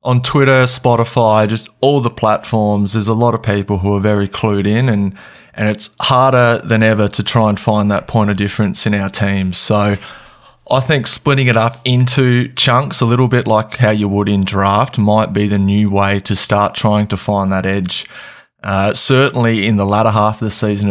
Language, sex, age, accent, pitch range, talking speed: English, male, 20-39, Australian, 100-110 Hz, 205 wpm